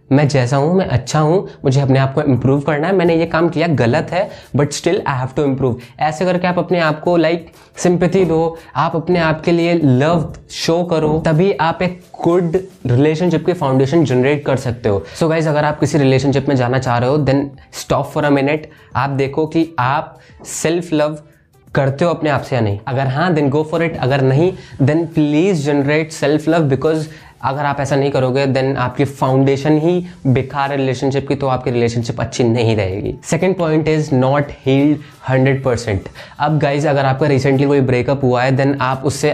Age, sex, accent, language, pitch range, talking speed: 20-39, male, native, Hindi, 135-160 Hz, 205 wpm